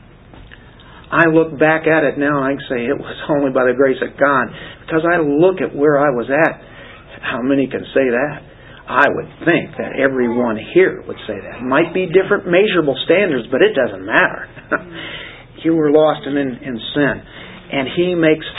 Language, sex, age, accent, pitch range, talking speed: English, male, 50-69, American, 140-190 Hz, 185 wpm